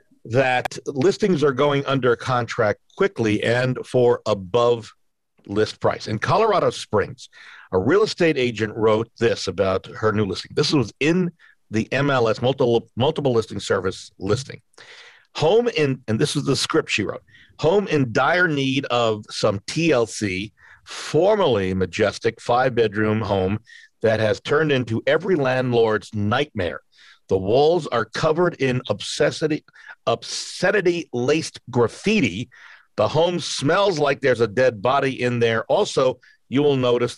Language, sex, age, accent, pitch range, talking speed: English, male, 50-69, American, 110-150 Hz, 135 wpm